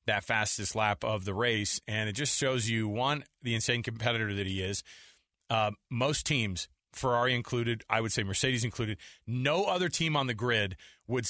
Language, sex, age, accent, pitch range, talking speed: English, male, 30-49, American, 105-125 Hz, 185 wpm